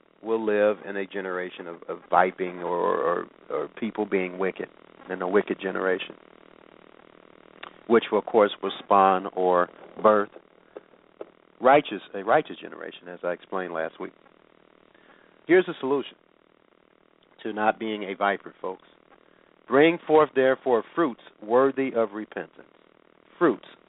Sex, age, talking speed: male, 40-59, 130 wpm